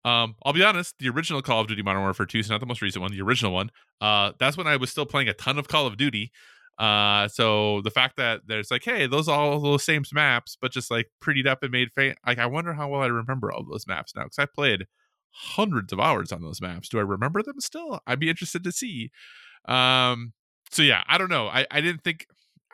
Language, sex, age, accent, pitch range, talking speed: English, male, 20-39, American, 105-135 Hz, 260 wpm